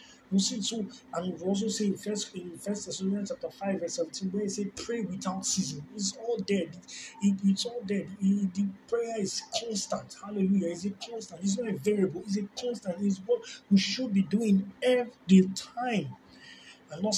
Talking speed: 195 wpm